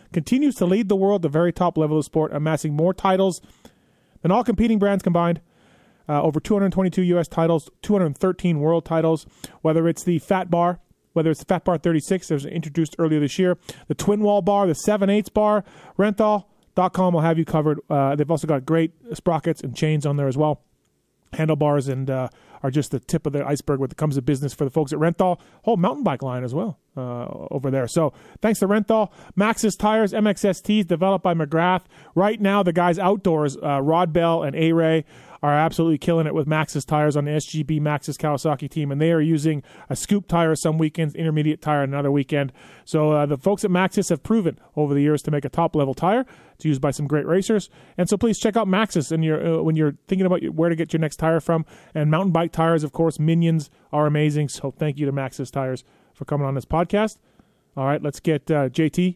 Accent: American